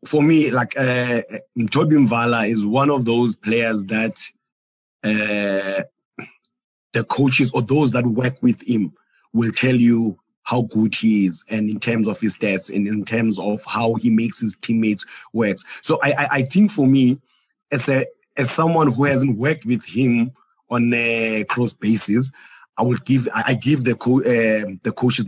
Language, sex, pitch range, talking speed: English, male, 110-130 Hz, 175 wpm